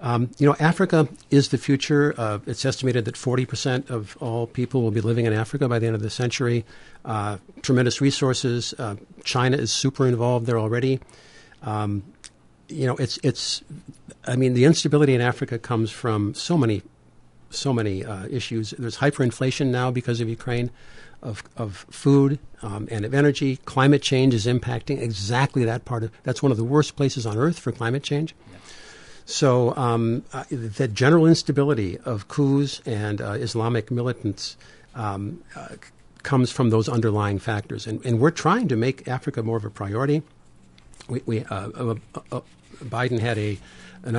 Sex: male